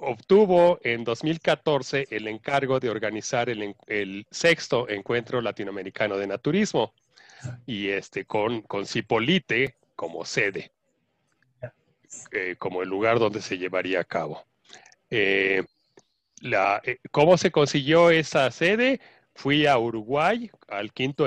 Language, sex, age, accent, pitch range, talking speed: Spanish, male, 40-59, Mexican, 110-155 Hz, 120 wpm